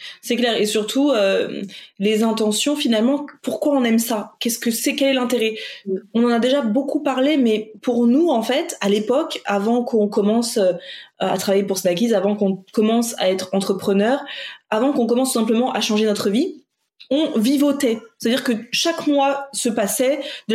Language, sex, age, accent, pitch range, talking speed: French, female, 20-39, French, 210-275 Hz, 180 wpm